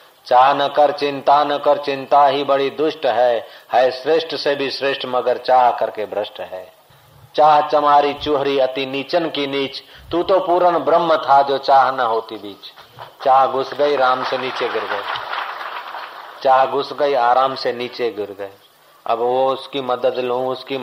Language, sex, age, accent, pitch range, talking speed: Hindi, male, 50-69, native, 130-150 Hz, 175 wpm